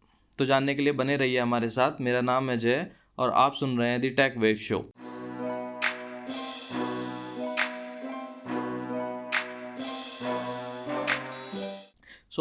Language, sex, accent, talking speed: English, male, Indian, 105 wpm